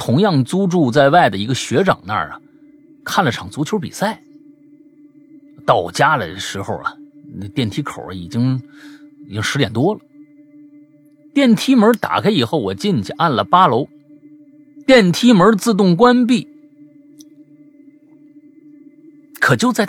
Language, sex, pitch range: Chinese, male, 180-295 Hz